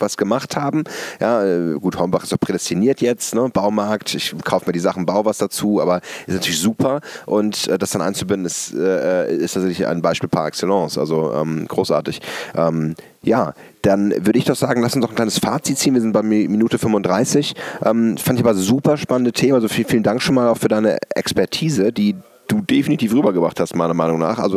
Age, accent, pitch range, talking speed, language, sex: 40-59, German, 100-125 Hz, 205 wpm, English, male